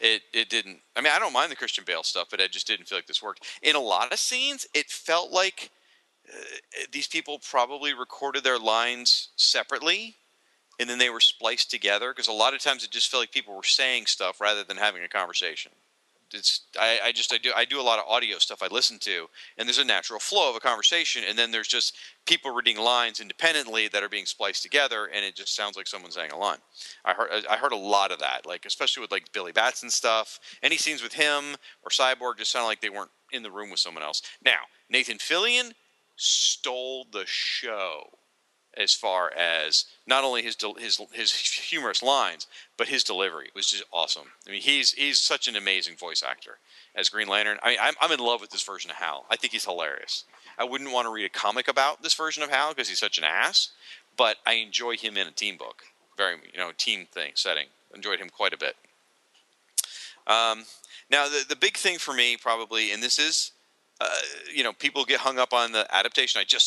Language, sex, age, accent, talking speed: English, male, 40-59, American, 220 wpm